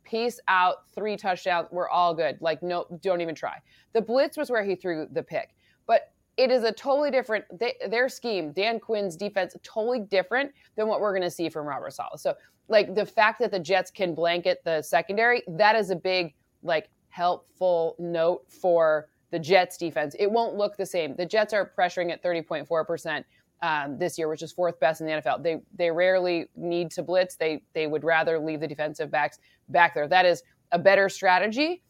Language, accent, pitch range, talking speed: English, American, 165-205 Hz, 200 wpm